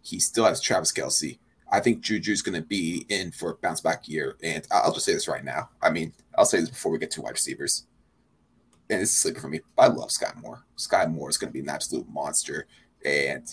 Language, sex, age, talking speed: English, male, 30-49, 240 wpm